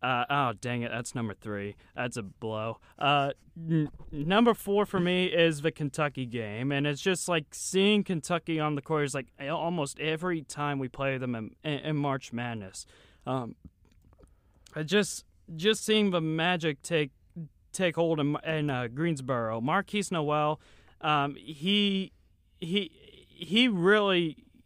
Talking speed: 150 wpm